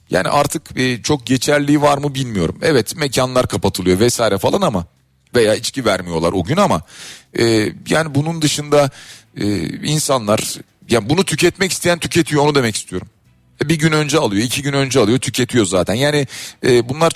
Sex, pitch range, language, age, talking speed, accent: male, 100-135 Hz, Turkish, 40-59, 150 wpm, native